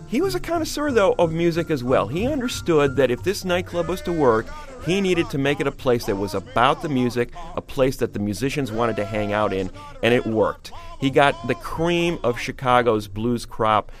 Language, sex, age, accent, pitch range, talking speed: English, male, 40-59, American, 105-135 Hz, 220 wpm